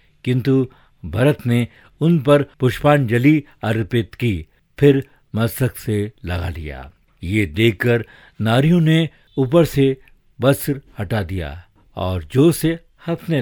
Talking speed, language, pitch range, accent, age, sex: 110 wpm, Hindi, 100-140 Hz, native, 50-69, male